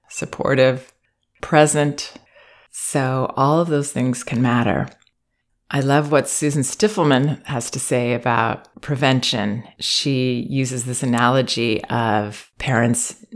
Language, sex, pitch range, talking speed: English, female, 125-155 Hz, 110 wpm